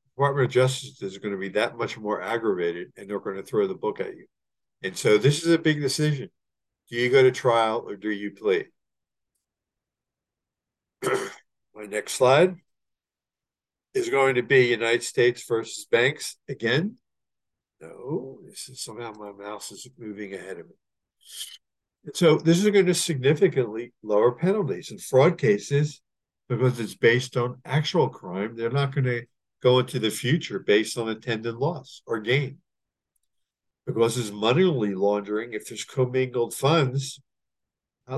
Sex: male